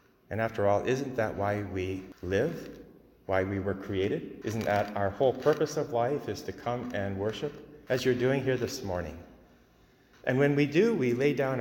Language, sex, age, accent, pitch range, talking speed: English, male, 40-59, American, 105-130 Hz, 190 wpm